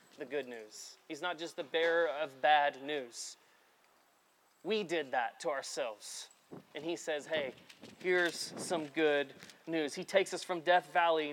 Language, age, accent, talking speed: English, 30-49, American, 160 wpm